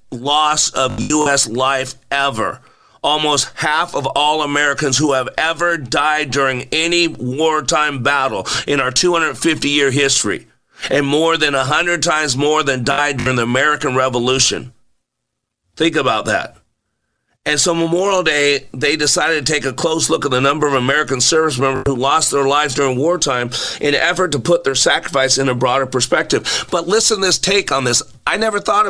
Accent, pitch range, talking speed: American, 130-155 Hz, 170 wpm